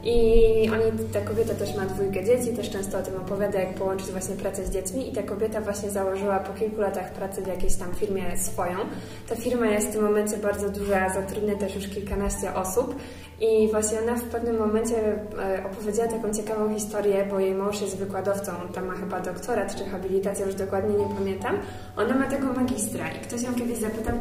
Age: 20-39